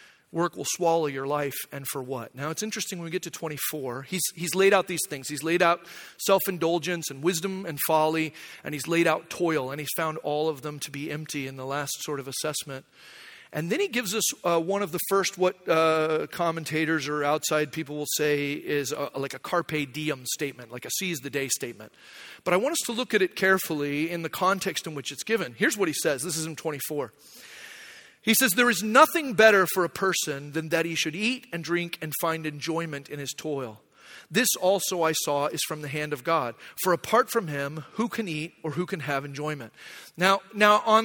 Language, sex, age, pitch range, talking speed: English, male, 40-59, 150-220 Hz, 220 wpm